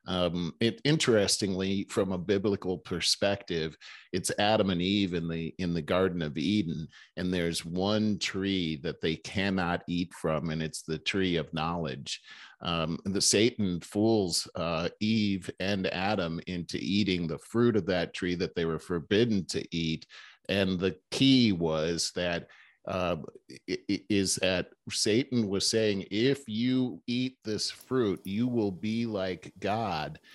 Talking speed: 150 wpm